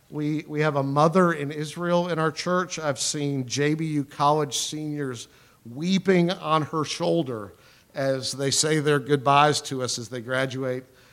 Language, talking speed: English, 155 wpm